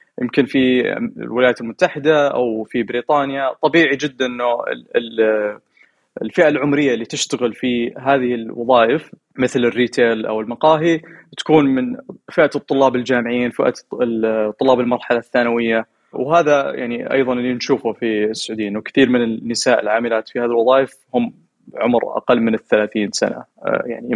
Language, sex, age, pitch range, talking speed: Arabic, male, 20-39, 120-150 Hz, 125 wpm